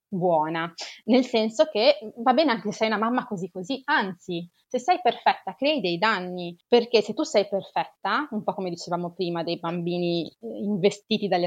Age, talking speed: 20-39, 180 wpm